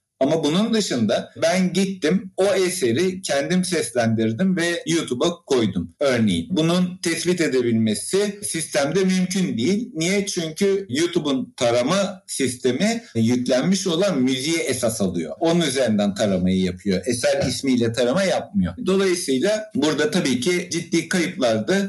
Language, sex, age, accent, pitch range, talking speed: Turkish, male, 60-79, native, 125-190 Hz, 120 wpm